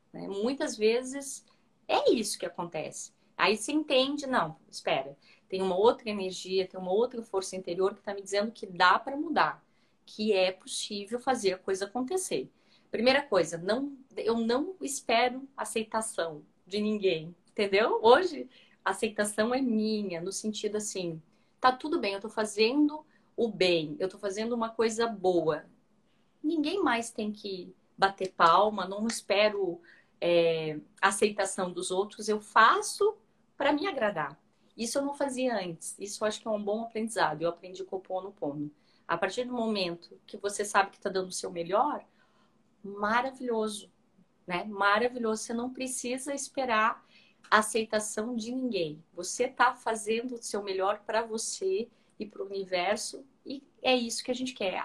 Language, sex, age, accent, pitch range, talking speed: Portuguese, female, 30-49, Brazilian, 195-245 Hz, 160 wpm